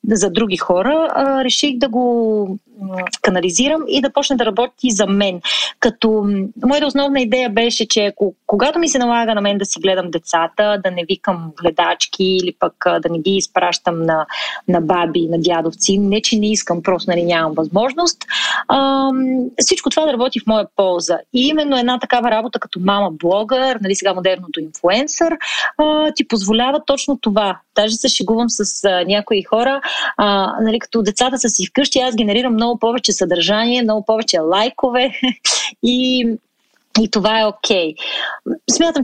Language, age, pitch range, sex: Bulgarian, 30-49, 190-255 Hz, female